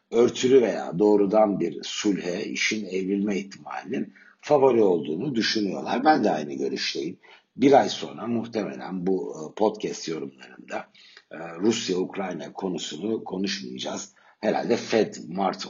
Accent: native